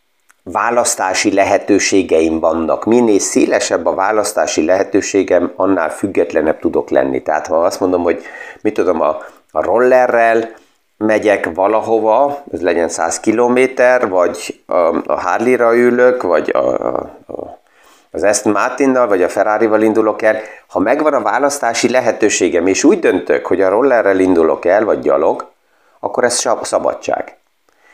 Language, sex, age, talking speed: Hungarian, male, 30-49, 135 wpm